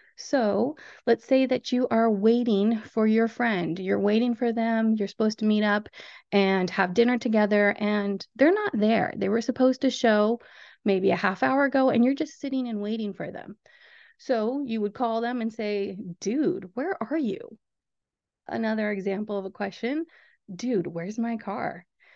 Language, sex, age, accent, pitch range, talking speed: English, female, 30-49, American, 200-250 Hz, 175 wpm